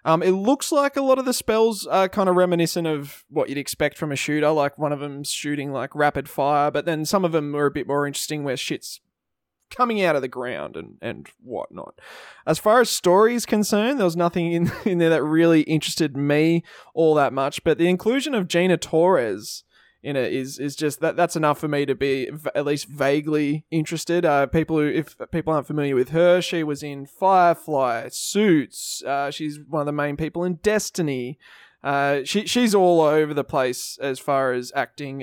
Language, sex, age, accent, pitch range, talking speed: English, male, 20-39, Australian, 145-180 Hz, 210 wpm